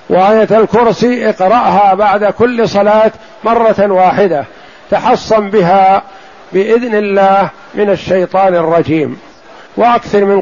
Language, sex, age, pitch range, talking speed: Arabic, male, 50-69, 185-210 Hz, 100 wpm